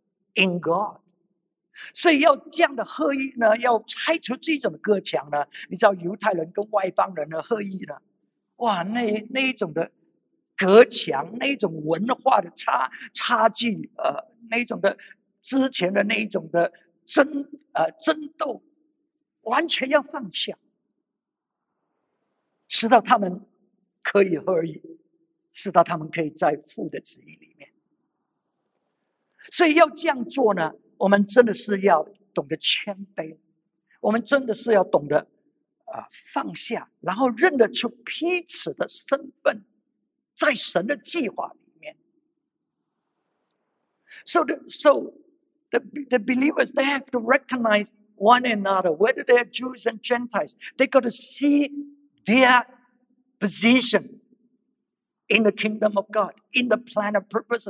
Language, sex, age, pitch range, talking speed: English, male, 50-69, 200-290 Hz, 45 wpm